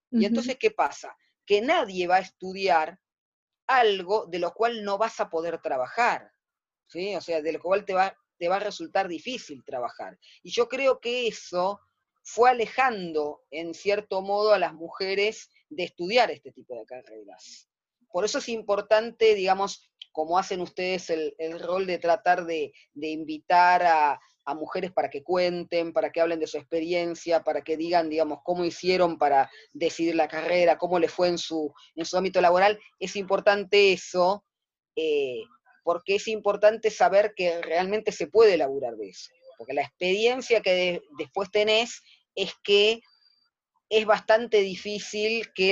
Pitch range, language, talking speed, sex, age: 165-215 Hz, Spanish, 165 wpm, female, 30-49